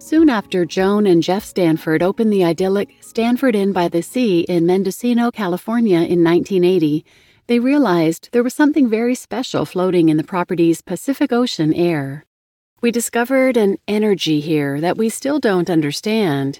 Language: English